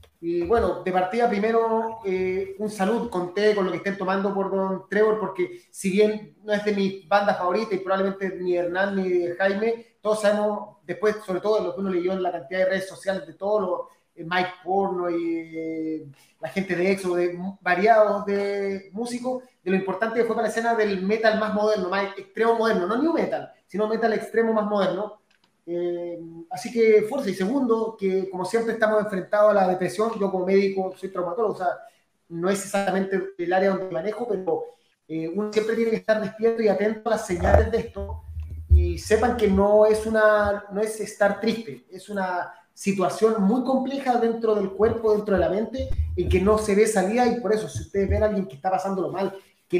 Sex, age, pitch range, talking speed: male, 30-49, 185-220 Hz, 205 wpm